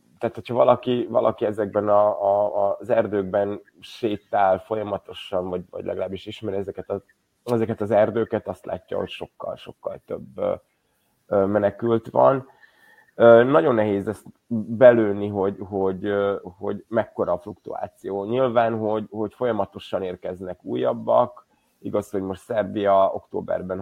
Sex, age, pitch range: male, 30-49, 95-110 Hz